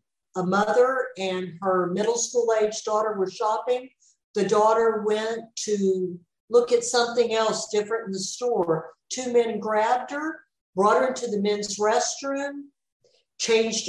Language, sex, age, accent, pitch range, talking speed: English, female, 60-79, American, 190-245 Hz, 140 wpm